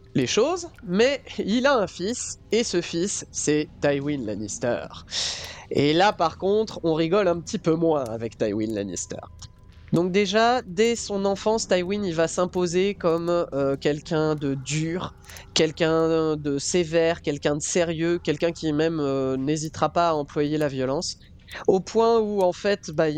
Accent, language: French, French